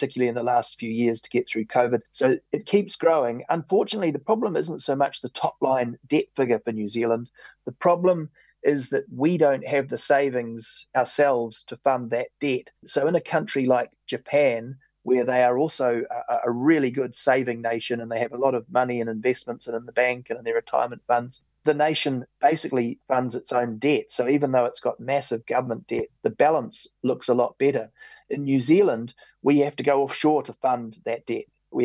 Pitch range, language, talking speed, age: 120-145 Hz, English, 205 wpm, 30-49